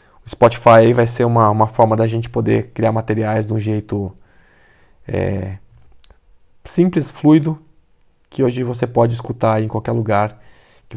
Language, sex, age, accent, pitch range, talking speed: Portuguese, male, 20-39, Brazilian, 105-130 Hz, 140 wpm